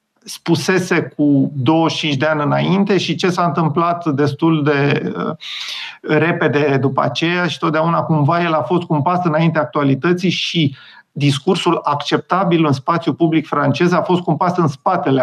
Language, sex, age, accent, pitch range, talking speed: Romanian, male, 50-69, native, 150-200 Hz, 140 wpm